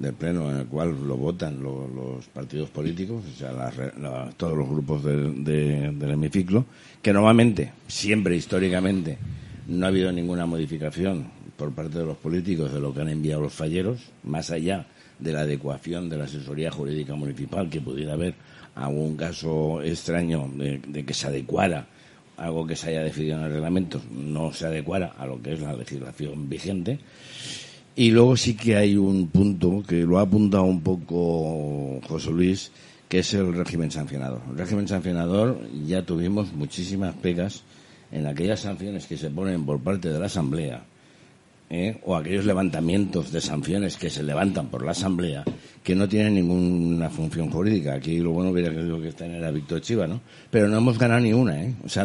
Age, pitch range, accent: 60-79, 75-95 Hz, Spanish